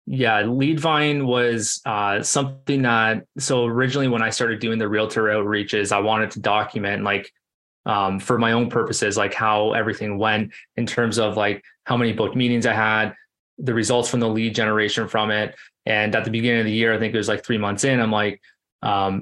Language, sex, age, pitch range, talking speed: English, male, 20-39, 105-120 Hz, 205 wpm